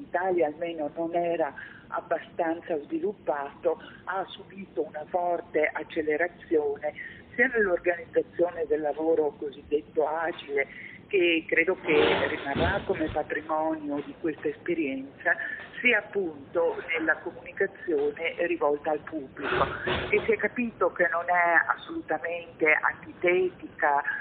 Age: 50-69